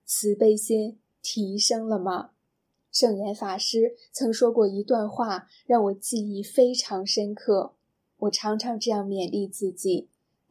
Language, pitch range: Chinese, 195-240 Hz